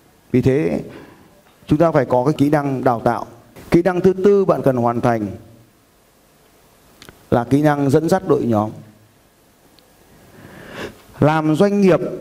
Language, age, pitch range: Vietnamese, 20-39, 115-155 Hz